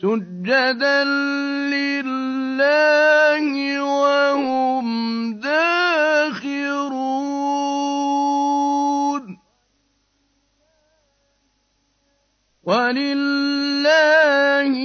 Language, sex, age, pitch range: Arabic, male, 50-69, 245-280 Hz